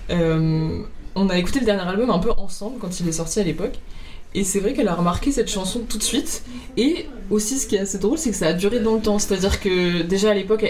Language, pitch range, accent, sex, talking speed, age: French, 180-220 Hz, French, female, 275 wpm, 20-39